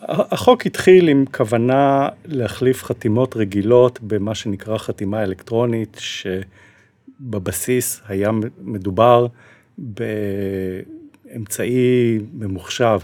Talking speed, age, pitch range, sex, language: 75 wpm, 50-69, 100-125 Hz, male, Hebrew